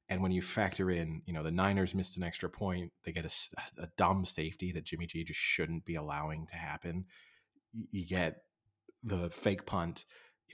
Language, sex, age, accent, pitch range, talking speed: English, male, 30-49, American, 85-100 Hz, 195 wpm